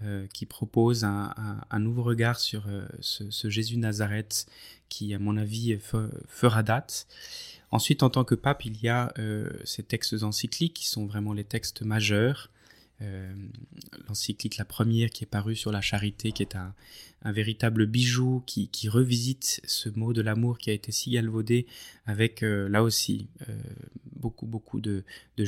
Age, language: 20-39, French